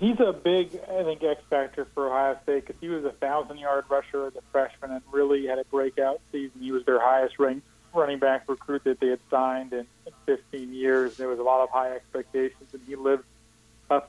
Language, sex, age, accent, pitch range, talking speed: English, male, 40-59, American, 130-150 Hz, 210 wpm